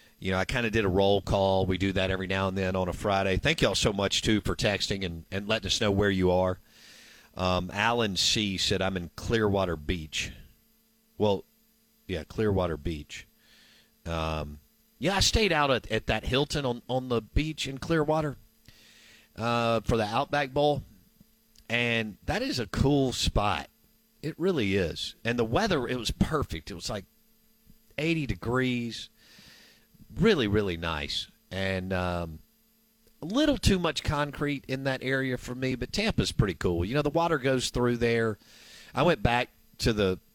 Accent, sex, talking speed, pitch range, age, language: American, male, 175 wpm, 95-130 Hz, 50-69, English